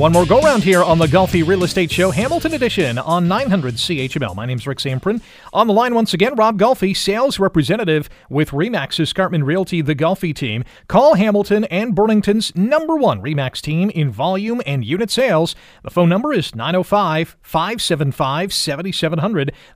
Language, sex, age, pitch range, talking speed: English, male, 40-59, 145-195 Hz, 160 wpm